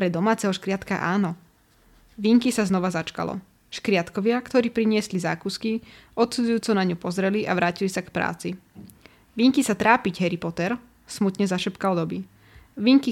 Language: Slovak